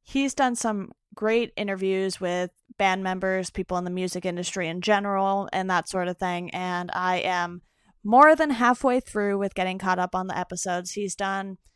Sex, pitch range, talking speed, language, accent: female, 180-215 Hz, 185 wpm, English, American